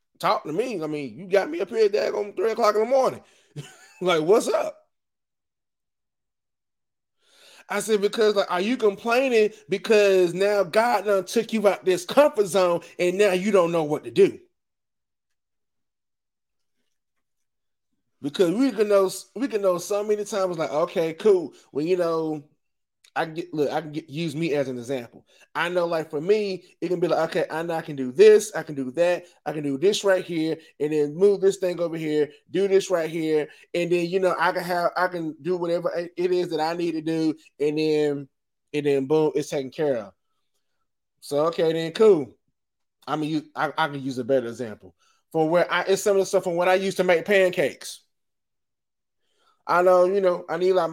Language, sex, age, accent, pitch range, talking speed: English, male, 20-39, American, 155-200 Hz, 200 wpm